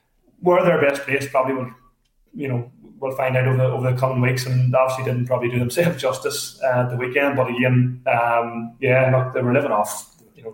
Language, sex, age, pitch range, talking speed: English, male, 20-39, 120-130 Hz, 210 wpm